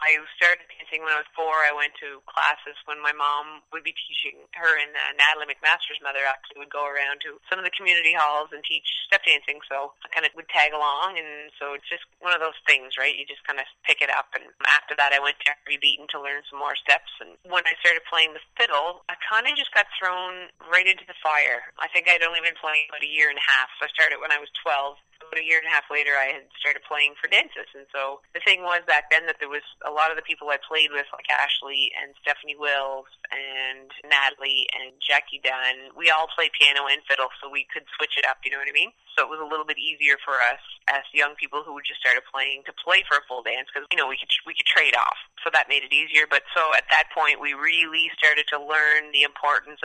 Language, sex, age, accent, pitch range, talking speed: English, female, 20-39, American, 140-160 Hz, 260 wpm